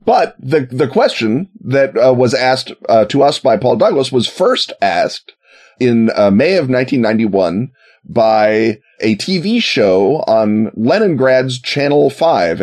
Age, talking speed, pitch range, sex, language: 30-49, 145 wpm, 115-150 Hz, male, English